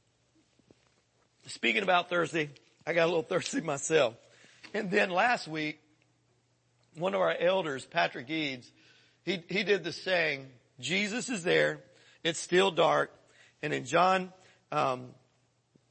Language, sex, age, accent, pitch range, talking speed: English, male, 50-69, American, 160-205 Hz, 130 wpm